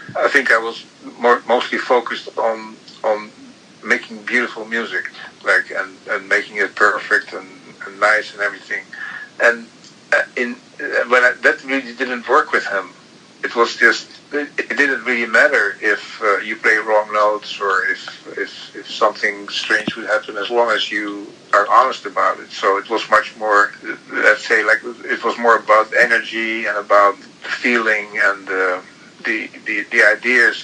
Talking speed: 165 wpm